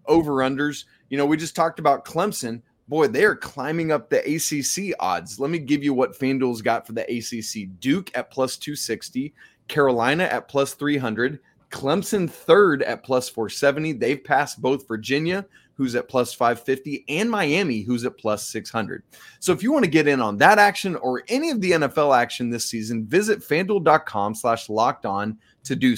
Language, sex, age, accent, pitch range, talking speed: English, male, 30-49, American, 125-175 Hz, 180 wpm